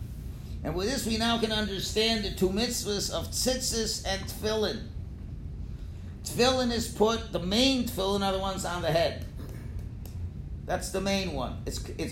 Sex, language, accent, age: male, English, American, 50-69